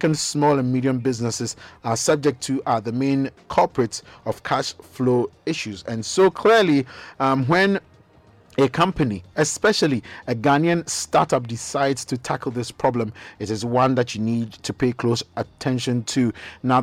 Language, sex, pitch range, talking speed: English, male, 115-140 Hz, 160 wpm